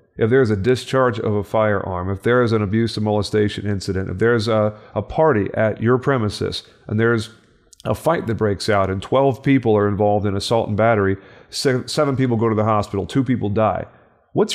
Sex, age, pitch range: male, 40-59, 105-125 Hz